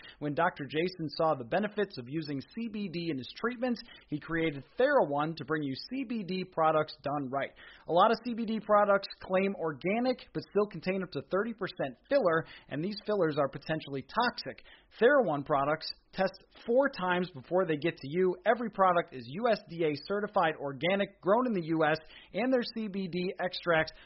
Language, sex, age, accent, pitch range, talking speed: English, male, 30-49, American, 155-205 Hz, 165 wpm